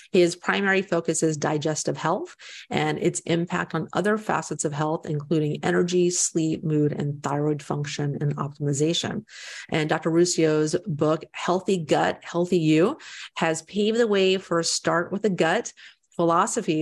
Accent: American